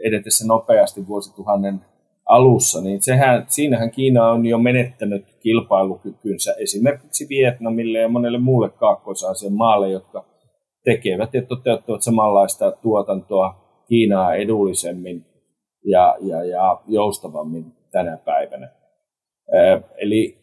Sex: male